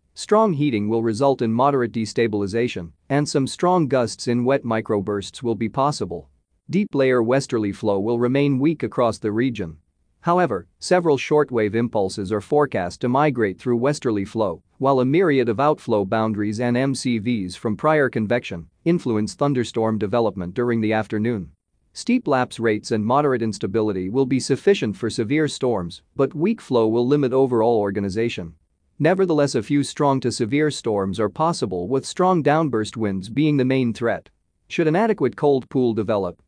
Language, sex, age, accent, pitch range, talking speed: English, male, 40-59, American, 110-145 Hz, 160 wpm